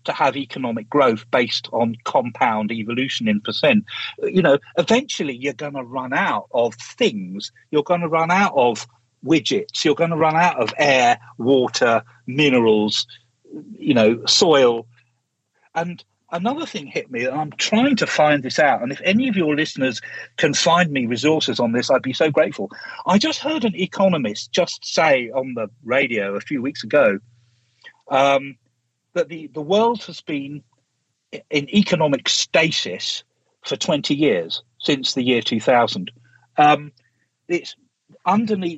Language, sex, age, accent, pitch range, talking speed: English, male, 50-69, British, 125-175 Hz, 155 wpm